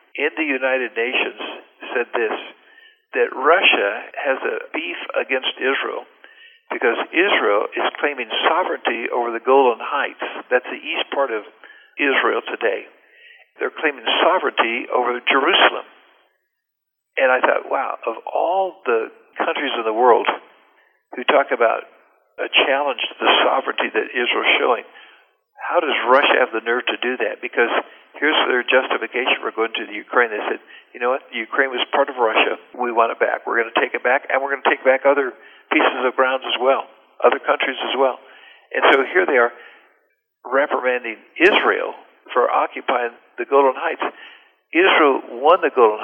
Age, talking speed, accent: 60-79, 165 wpm, American